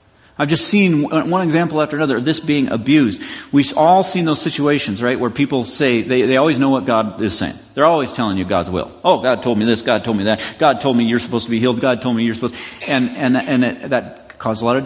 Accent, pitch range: American, 110-145 Hz